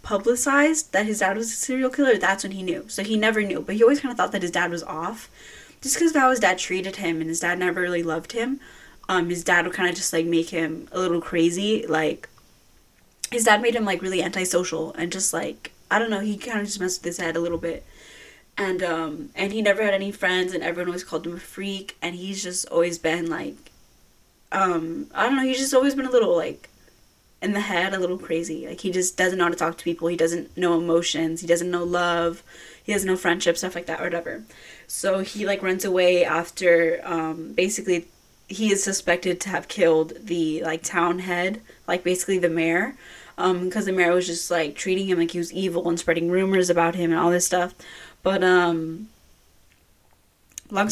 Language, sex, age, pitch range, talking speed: English, female, 10-29, 170-195 Hz, 225 wpm